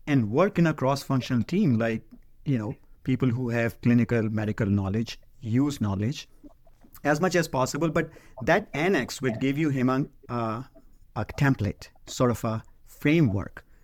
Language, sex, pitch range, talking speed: English, male, 115-145 Hz, 150 wpm